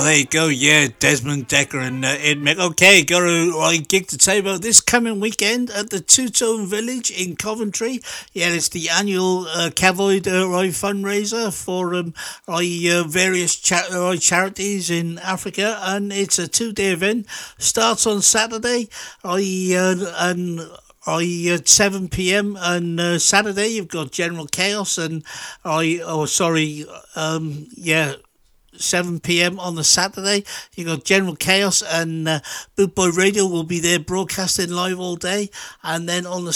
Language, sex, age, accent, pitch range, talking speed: English, male, 60-79, British, 170-200 Hz, 165 wpm